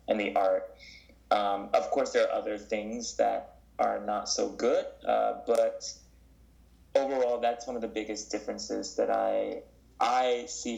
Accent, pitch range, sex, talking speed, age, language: American, 100-115 Hz, male, 155 wpm, 20-39, English